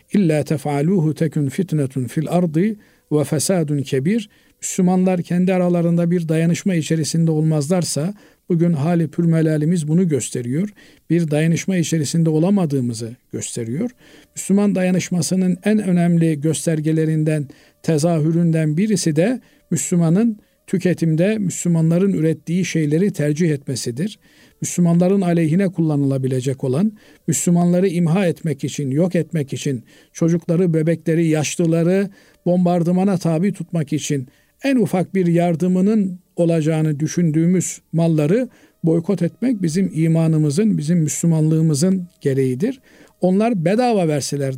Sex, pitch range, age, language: male, 155-185 Hz, 50-69, Turkish